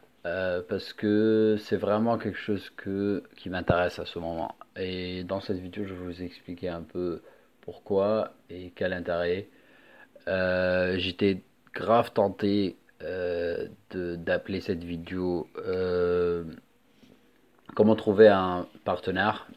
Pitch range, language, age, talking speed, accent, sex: 90-100 Hz, French, 30-49, 120 wpm, French, male